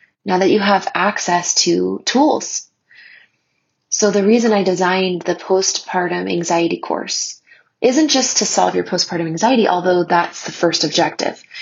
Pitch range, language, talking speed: 170-215 Hz, English, 145 wpm